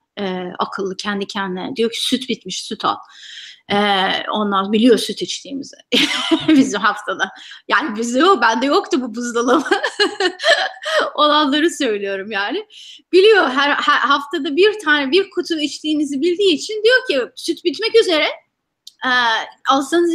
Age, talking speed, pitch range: 30-49, 135 wpm, 225-320 Hz